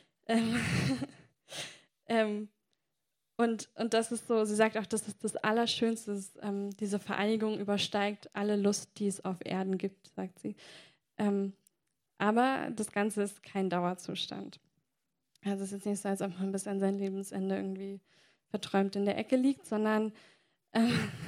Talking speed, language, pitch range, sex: 155 wpm, German, 195-220 Hz, female